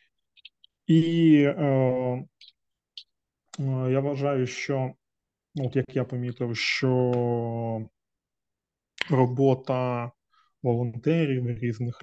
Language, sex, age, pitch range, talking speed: Ukrainian, male, 20-39, 120-135 Hz, 70 wpm